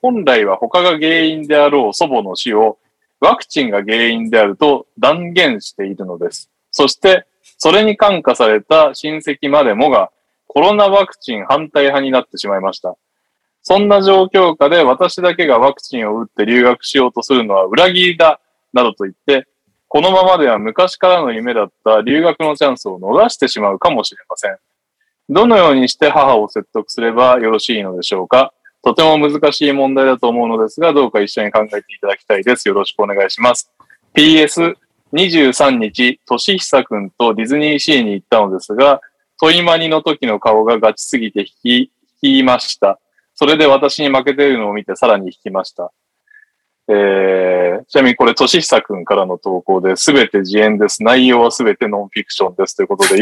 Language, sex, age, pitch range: Japanese, male, 20-39, 110-180 Hz